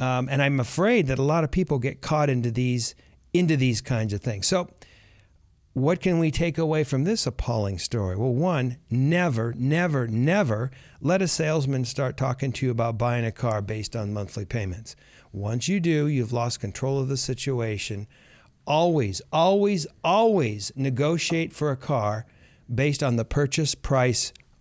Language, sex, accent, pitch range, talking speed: English, male, American, 115-155 Hz, 170 wpm